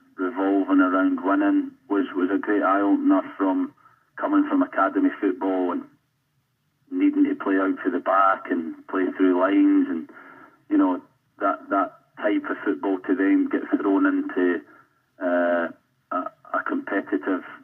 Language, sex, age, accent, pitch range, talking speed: English, male, 30-49, British, 280-325 Hz, 145 wpm